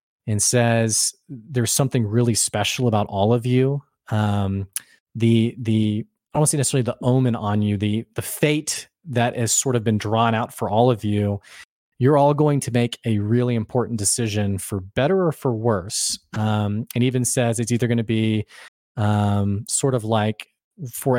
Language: English